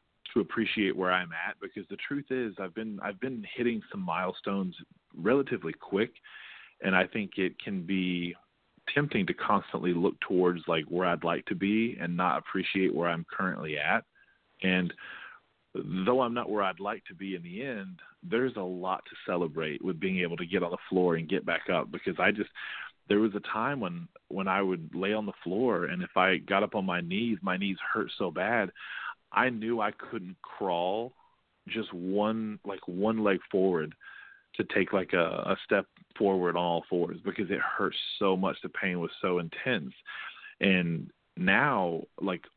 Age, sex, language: 30-49, male, English